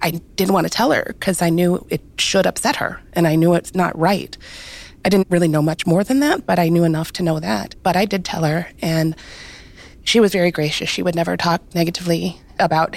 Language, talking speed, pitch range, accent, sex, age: English, 230 wpm, 165-185 Hz, American, female, 30-49